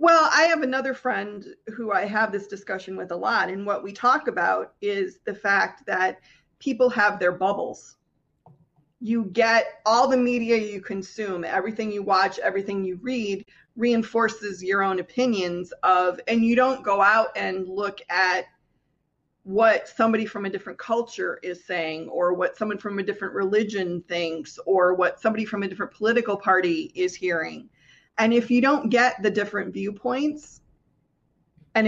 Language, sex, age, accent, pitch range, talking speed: English, female, 30-49, American, 190-230 Hz, 165 wpm